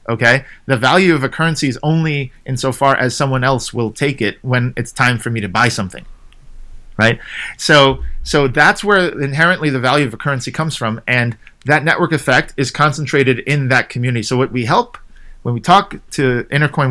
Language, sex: English, male